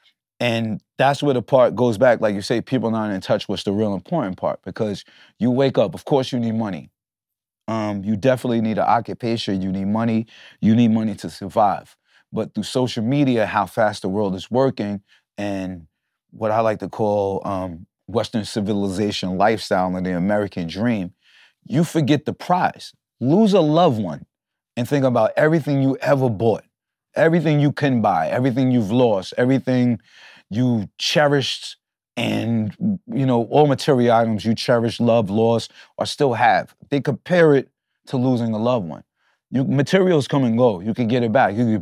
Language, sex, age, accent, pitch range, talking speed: English, male, 30-49, American, 105-130 Hz, 180 wpm